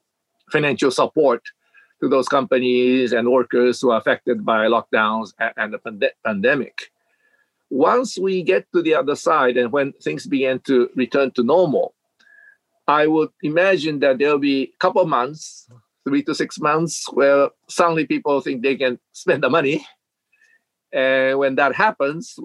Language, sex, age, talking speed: English, male, 50-69, 155 wpm